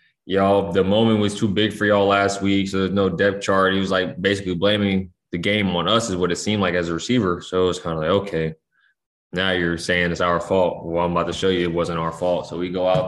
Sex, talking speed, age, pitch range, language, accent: male, 270 wpm, 20-39, 85-95 Hz, English, American